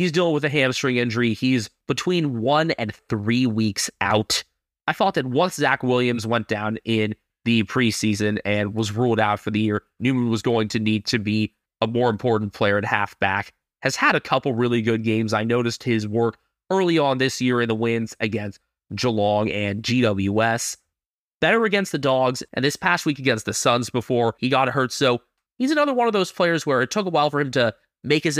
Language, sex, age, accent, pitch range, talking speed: English, male, 20-39, American, 110-150 Hz, 205 wpm